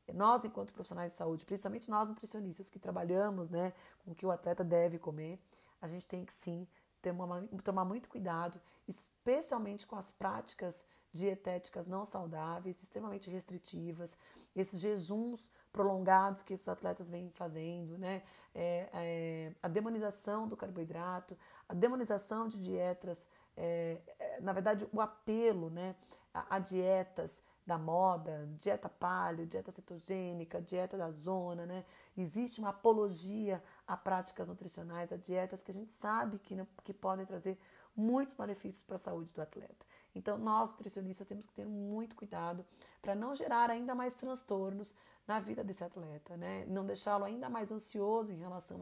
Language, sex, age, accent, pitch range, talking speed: Portuguese, female, 30-49, Brazilian, 175-210 Hz, 145 wpm